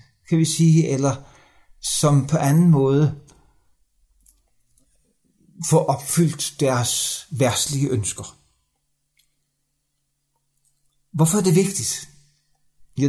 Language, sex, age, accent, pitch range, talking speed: Danish, male, 60-79, native, 135-165 Hz, 85 wpm